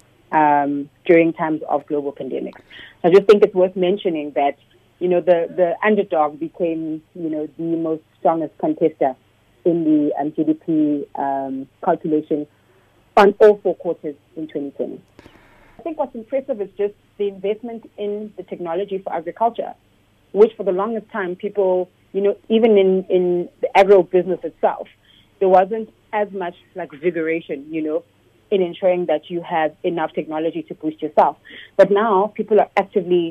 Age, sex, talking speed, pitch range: 30-49, female, 155 wpm, 155-195 Hz